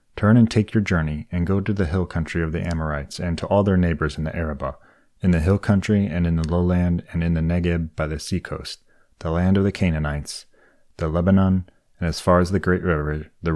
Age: 30-49